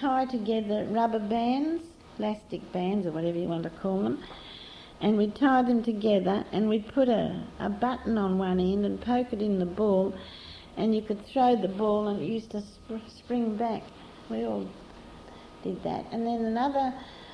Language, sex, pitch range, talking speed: English, female, 185-235 Hz, 180 wpm